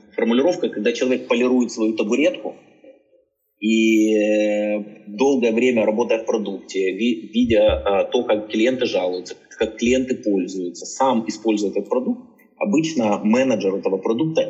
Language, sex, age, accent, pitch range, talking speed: Russian, male, 20-39, native, 100-125 Hz, 115 wpm